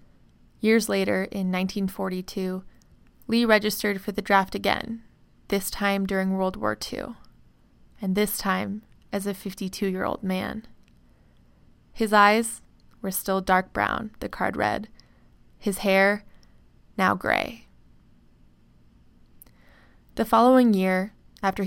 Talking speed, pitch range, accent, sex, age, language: 110 wpm, 175-200 Hz, American, female, 20-39, English